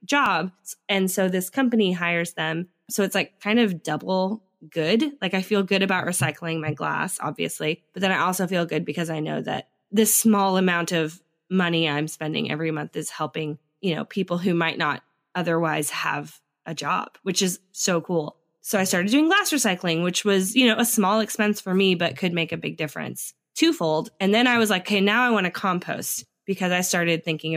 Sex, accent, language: female, American, English